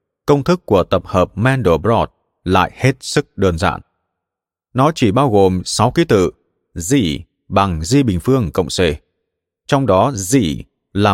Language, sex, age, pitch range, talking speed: Vietnamese, male, 30-49, 90-130 Hz, 155 wpm